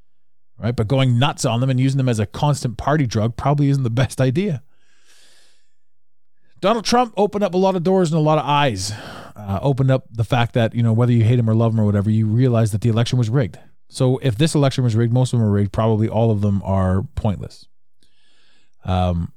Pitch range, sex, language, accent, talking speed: 105-135 Hz, male, English, American, 230 wpm